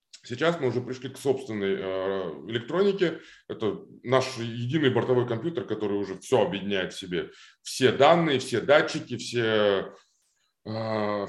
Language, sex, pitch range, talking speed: Russian, male, 115-145 Hz, 135 wpm